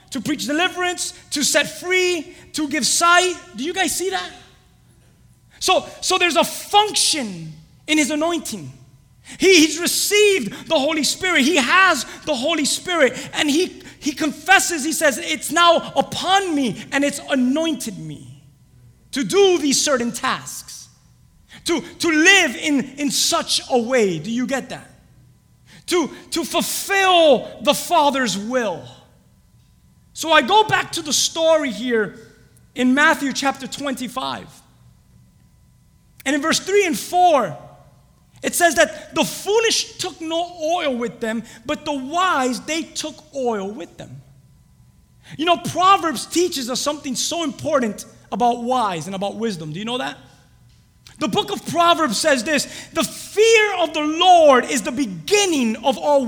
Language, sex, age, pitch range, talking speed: English, male, 30-49, 235-335 Hz, 150 wpm